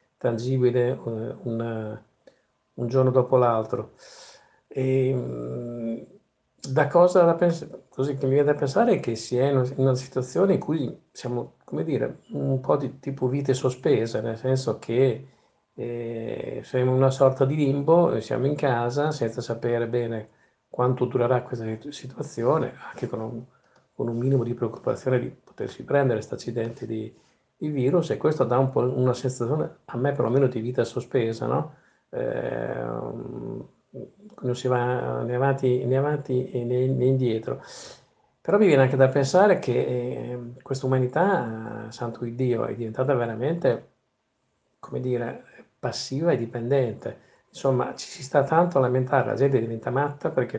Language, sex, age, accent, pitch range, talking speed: English, male, 50-69, Italian, 120-135 Hz, 155 wpm